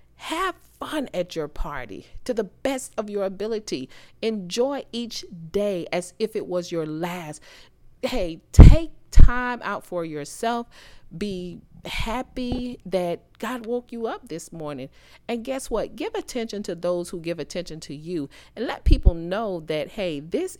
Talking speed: 155 wpm